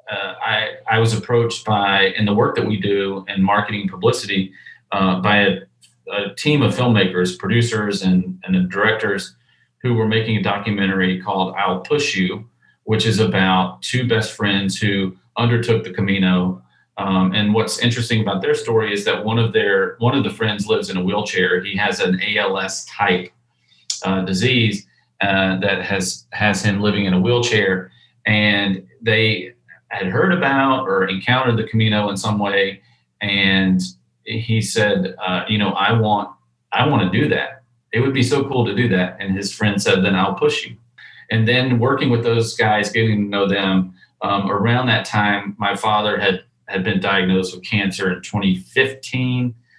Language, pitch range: English, 95-115 Hz